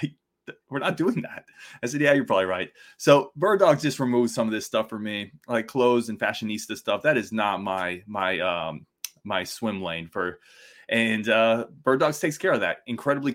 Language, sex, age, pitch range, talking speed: English, male, 20-39, 95-120 Hz, 200 wpm